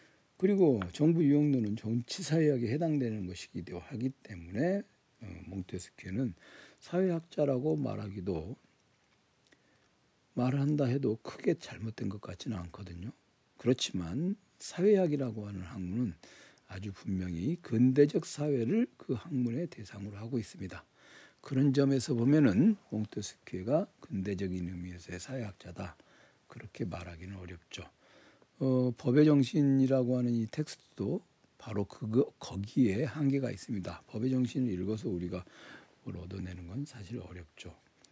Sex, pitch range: male, 95-145 Hz